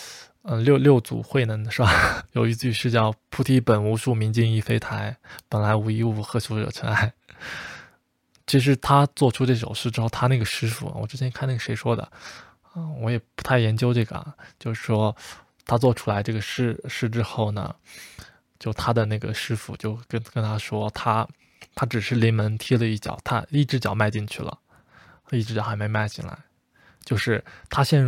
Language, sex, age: Chinese, male, 20-39